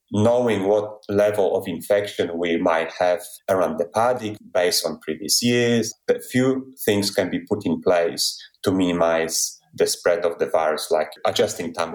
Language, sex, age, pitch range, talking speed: English, male, 30-49, 90-120 Hz, 165 wpm